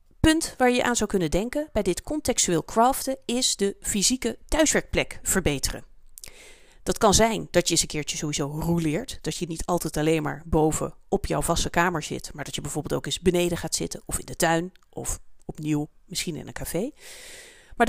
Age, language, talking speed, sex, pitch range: 30-49, Dutch, 195 wpm, female, 160-235 Hz